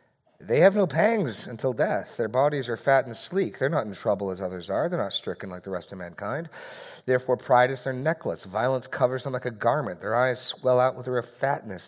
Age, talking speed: 40-59, 225 wpm